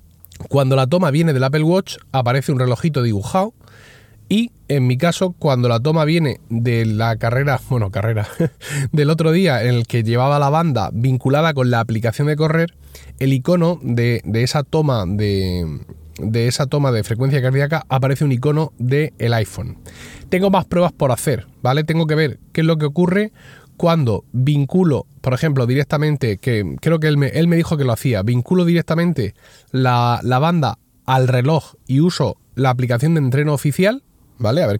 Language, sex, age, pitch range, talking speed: Spanish, male, 30-49, 120-165 Hz, 180 wpm